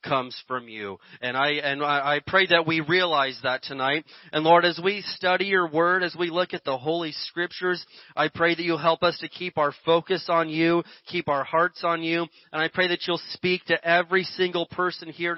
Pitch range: 160-200 Hz